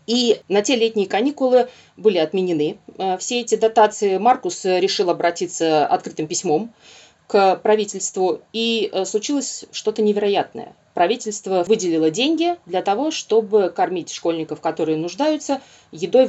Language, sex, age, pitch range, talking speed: Russian, female, 20-39, 185-270 Hz, 120 wpm